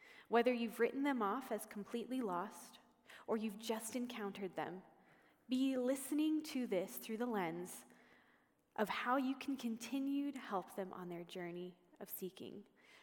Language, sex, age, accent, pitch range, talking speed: English, female, 20-39, American, 205-265 Hz, 150 wpm